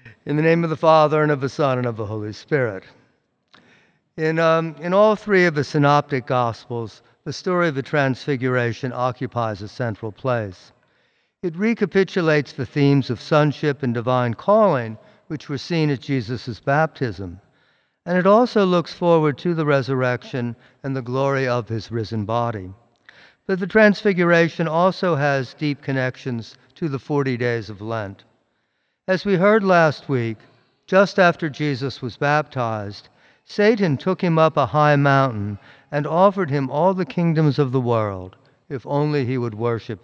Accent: American